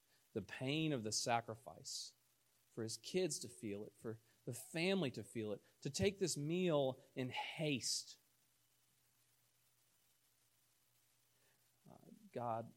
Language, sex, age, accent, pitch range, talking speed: English, male, 40-59, American, 115-130 Hz, 115 wpm